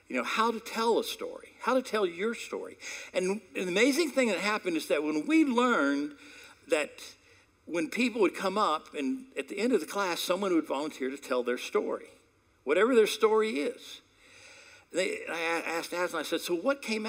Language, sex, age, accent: English, male, 60-79, American